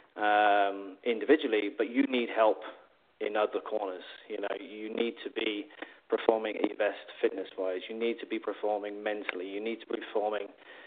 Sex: male